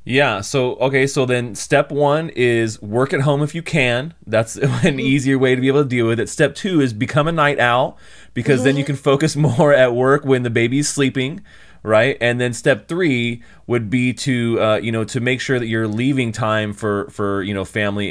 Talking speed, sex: 220 wpm, male